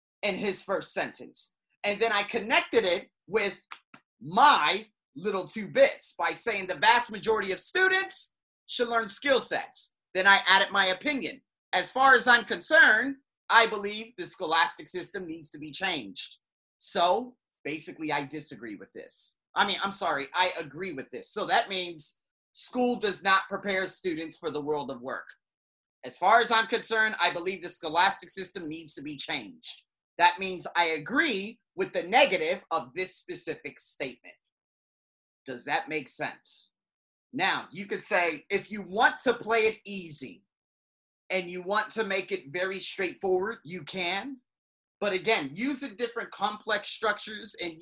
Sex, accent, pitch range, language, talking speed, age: male, American, 180-230 Hz, English, 160 wpm, 30-49